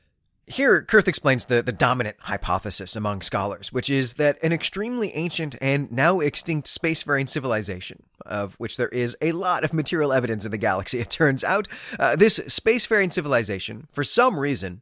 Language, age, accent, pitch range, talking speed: English, 30-49, American, 110-165 Hz, 170 wpm